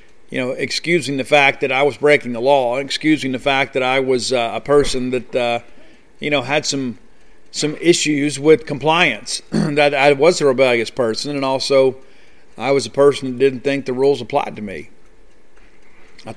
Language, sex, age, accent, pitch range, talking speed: English, male, 50-69, American, 130-150 Hz, 185 wpm